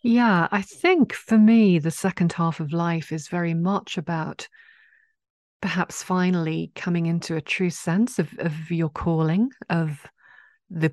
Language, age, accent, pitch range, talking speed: English, 40-59, British, 155-185 Hz, 150 wpm